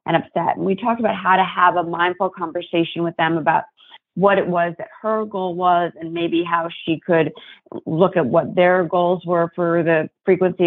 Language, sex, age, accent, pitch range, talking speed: English, female, 30-49, American, 170-205 Hz, 205 wpm